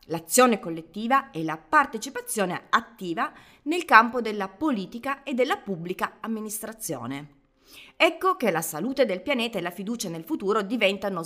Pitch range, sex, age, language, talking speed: 165-245 Hz, female, 30-49, Italian, 140 wpm